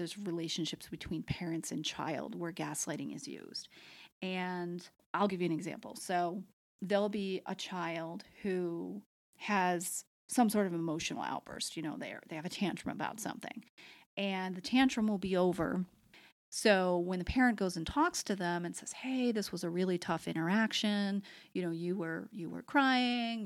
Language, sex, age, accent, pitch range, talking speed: English, female, 30-49, American, 175-205 Hz, 170 wpm